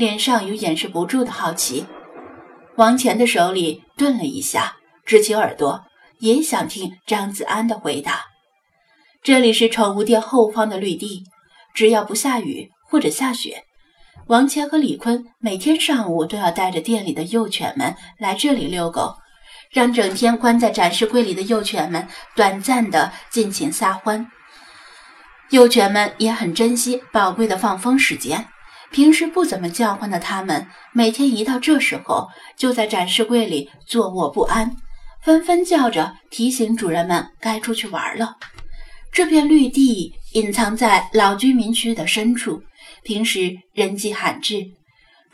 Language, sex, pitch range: Chinese, female, 200-250 Hz